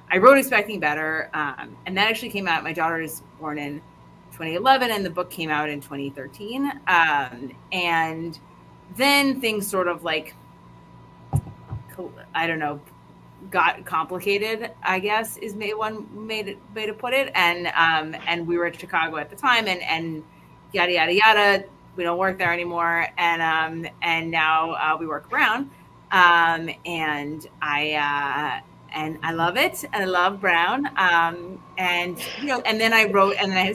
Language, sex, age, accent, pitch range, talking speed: English, female, 30-49, American, 155-195 Hz, 170 wpm